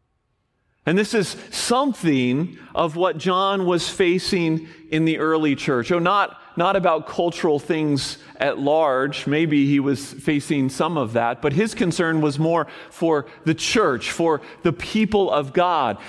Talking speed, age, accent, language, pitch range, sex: 150 wpm, 40-59, American, English, 125-175 Hz, male